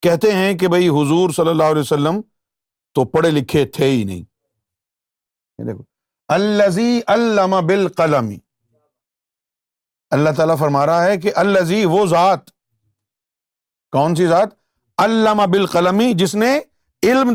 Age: 50-69